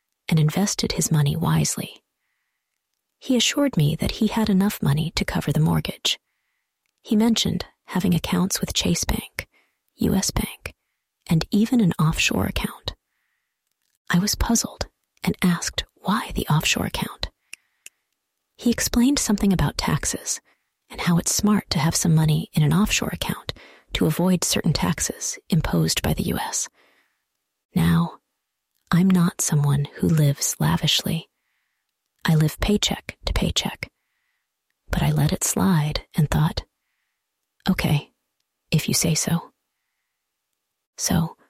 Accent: American